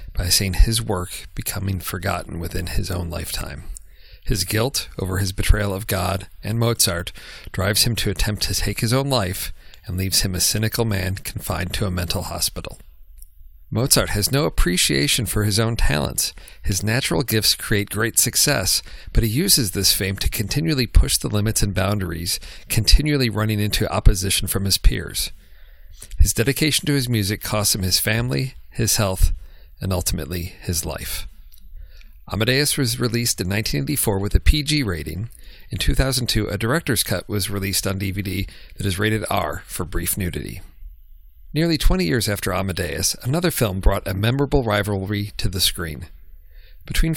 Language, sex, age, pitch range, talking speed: English, male, 40-59, 90-115 Hz, 160 wpm